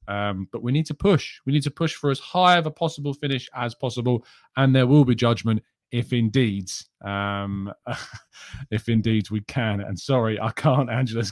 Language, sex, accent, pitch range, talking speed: English, male, British, 110-150 Hz, 180 wpm